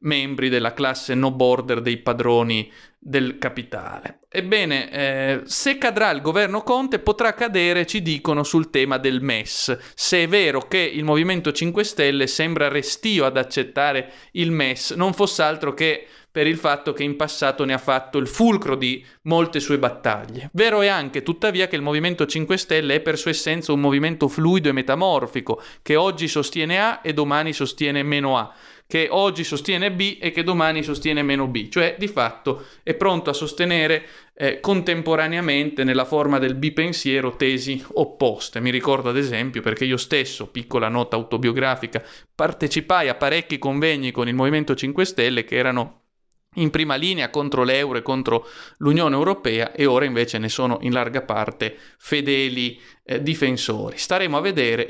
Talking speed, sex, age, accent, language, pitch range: 165 wpm, male, 30-49, native, Italian, 130-160 Hz